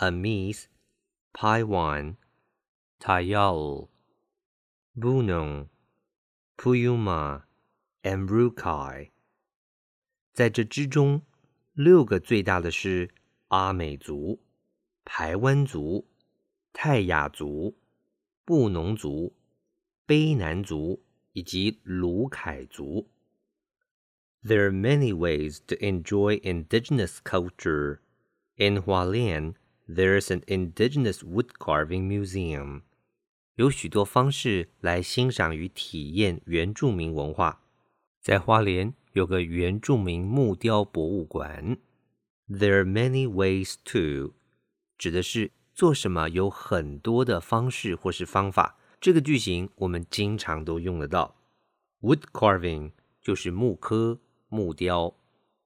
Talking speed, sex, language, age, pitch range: 35 wpm, male, English, 50-69, 85-120 Hz